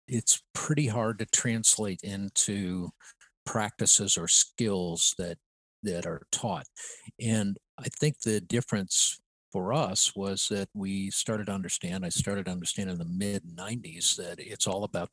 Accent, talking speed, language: American, 150 wpm, English